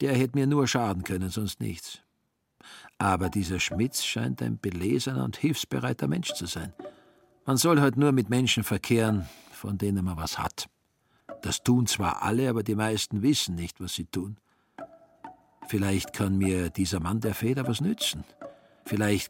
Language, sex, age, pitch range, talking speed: German, male, 50-69, 95-135 Hz, 165 wpm